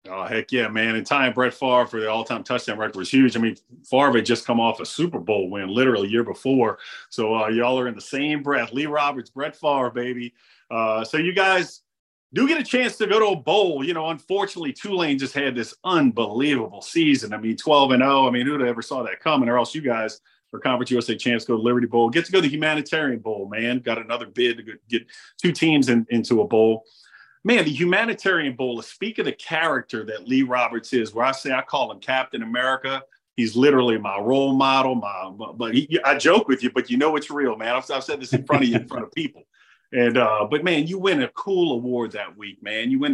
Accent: American